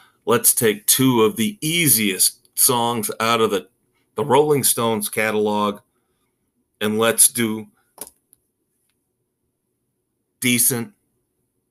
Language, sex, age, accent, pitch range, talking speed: English, male, 40-59, American, 105-120 Hz, 90 wpm